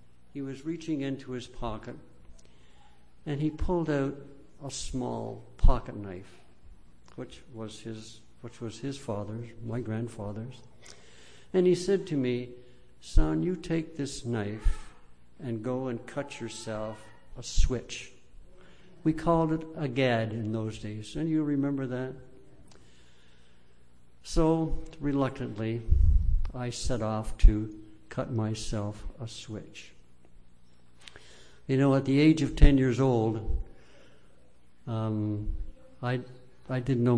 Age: 60-79